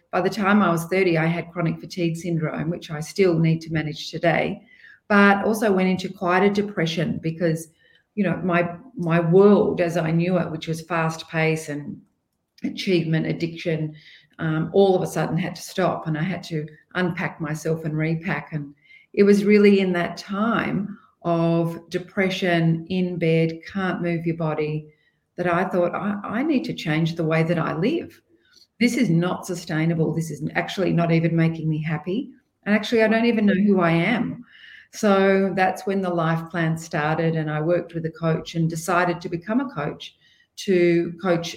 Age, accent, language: 40-59, Australian, English